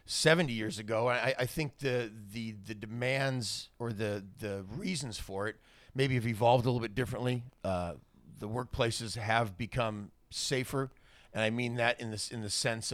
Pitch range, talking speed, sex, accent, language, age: 105-130 Hz, 175 wpm, male, American, English, 40-59